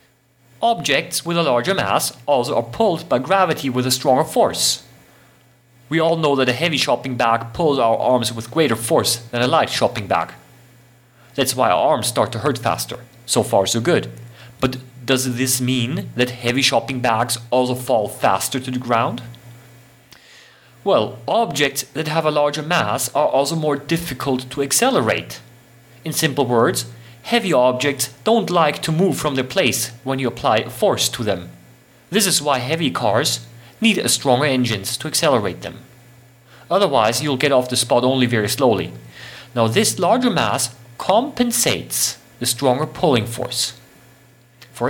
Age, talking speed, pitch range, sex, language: 30-49, 165 wpm, 120-150 Hz, male, English